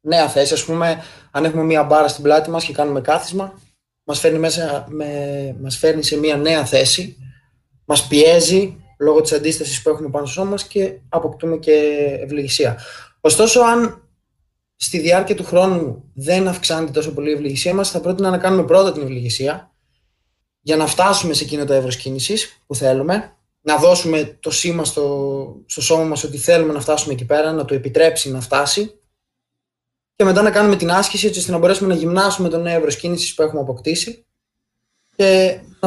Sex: male